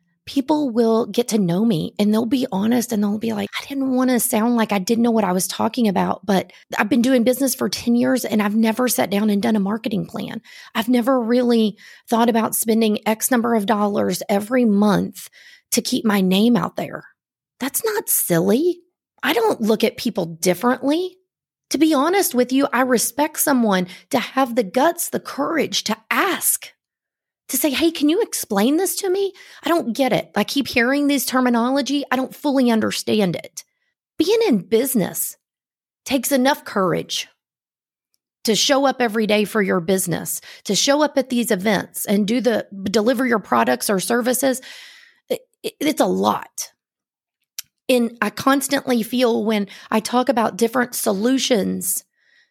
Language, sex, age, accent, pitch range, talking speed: English, female, 30-49, American, 215-270 Hz, 175 wpm